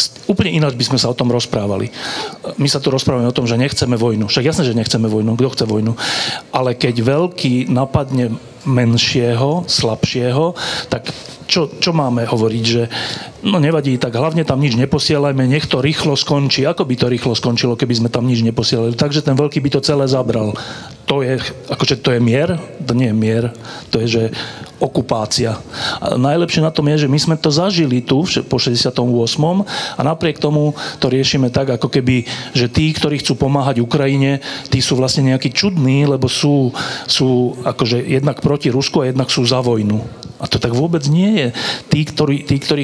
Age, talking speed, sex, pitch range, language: 40-59, 190 wpm, male, 125-150 Hz, Slovak